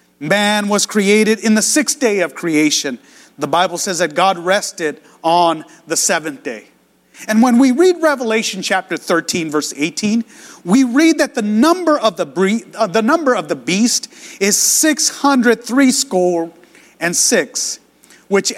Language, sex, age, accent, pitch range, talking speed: English, male, 30-49, American, 190-240 Hz, 135 wpm